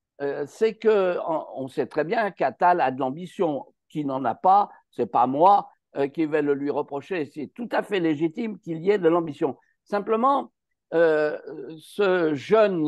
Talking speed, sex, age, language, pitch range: 170 wpm, male, 50-69, French, 150-225 Hz